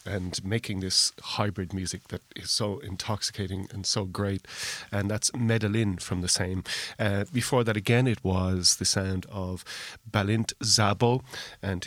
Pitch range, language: 95-110 Hz, English